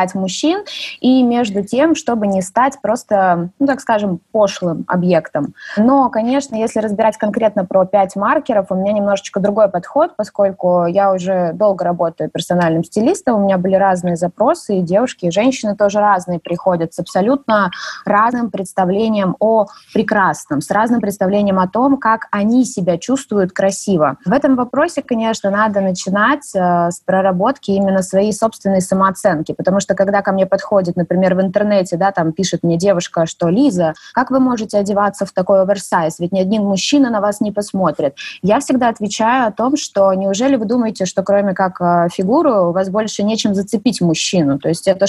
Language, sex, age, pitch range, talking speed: Russian, female, 20-39, 190-225 Hz, 170 wpm